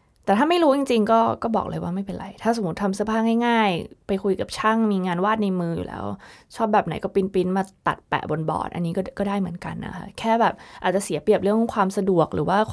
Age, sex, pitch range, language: 20-39, female, 175-215 Hz, Thai